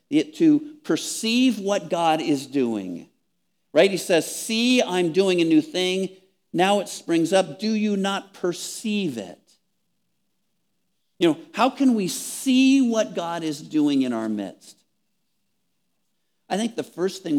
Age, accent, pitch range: 50-69, American, 140-195 Hz